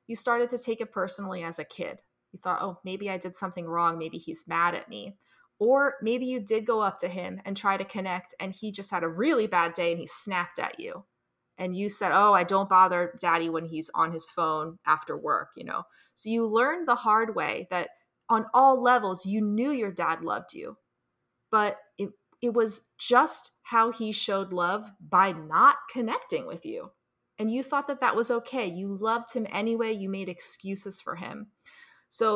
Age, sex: 20-39, female